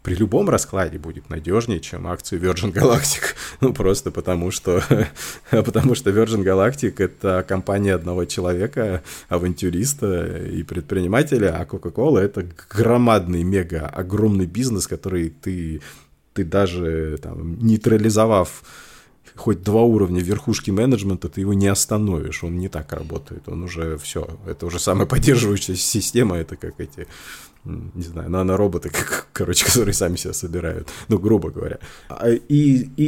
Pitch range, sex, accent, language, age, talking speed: 85-110 Hz, male, native, Russian, 20-39, 130 wpm